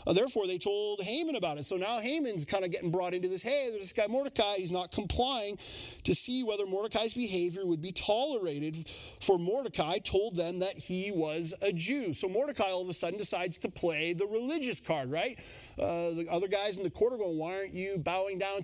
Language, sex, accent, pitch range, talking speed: English, male, American, 165-205 Hz, 215 wpm